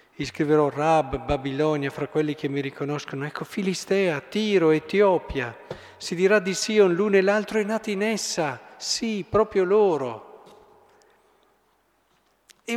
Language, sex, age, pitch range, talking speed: Italian, male, 50-69, 135-180 Hz, 130 wpm